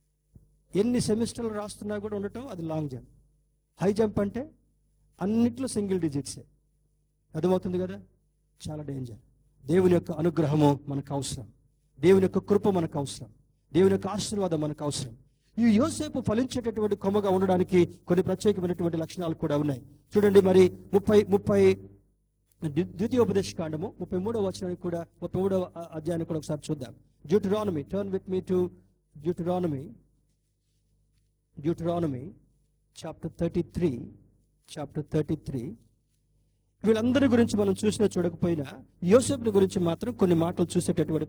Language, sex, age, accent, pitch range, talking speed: Telugu, male, 50-69, native, 150-200 Hz, 110 wpm